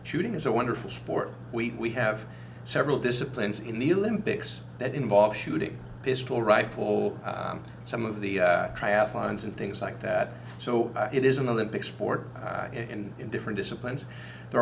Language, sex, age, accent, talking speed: English, male, 40-59, American, 170 wpm